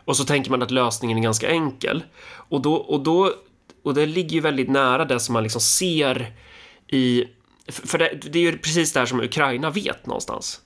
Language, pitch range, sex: Swedish, 115-145 Hz, male